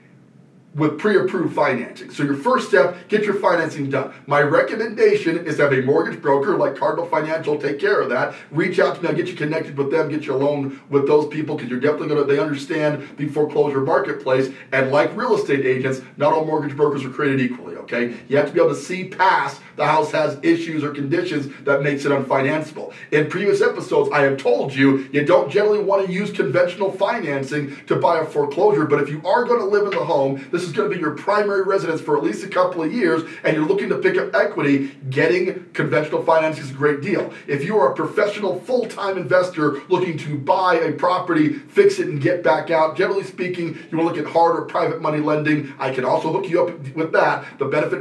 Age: 40-59